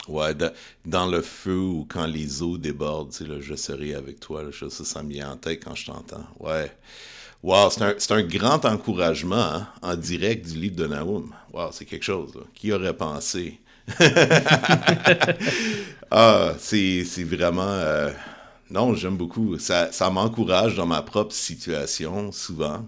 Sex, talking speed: male, 170 wpm